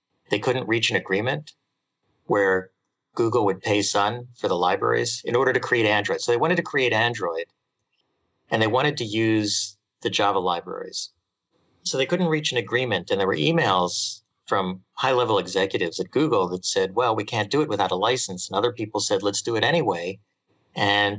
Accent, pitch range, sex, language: American, 100-130 Hz, male, English